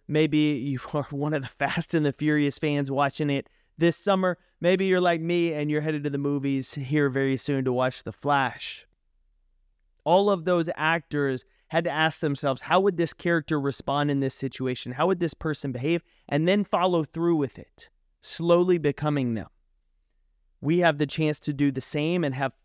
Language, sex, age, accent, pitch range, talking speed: English, male, 30-49, American, 130-170 Hz, 190 wpm